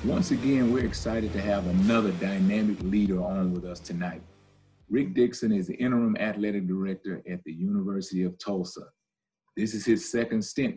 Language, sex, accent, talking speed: English, male, American, 165 wpm